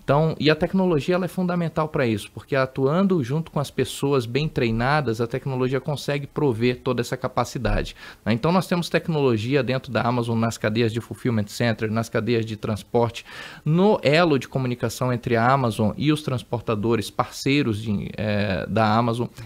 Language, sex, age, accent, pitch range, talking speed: Portuguese, male, 20-39, Brazilian, 120-155 Hz, 175 wpm